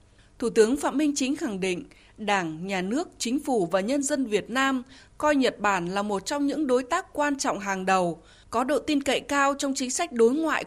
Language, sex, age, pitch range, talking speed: Vietnamese, female, 20-39, 200-280 Hz, 225 wpm